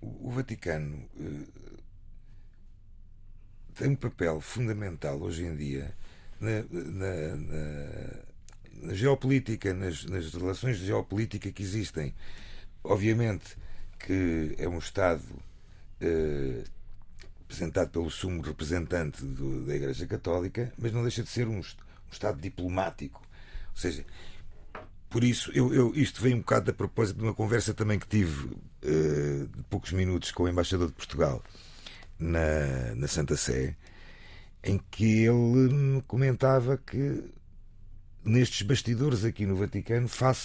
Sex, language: male, Portuguese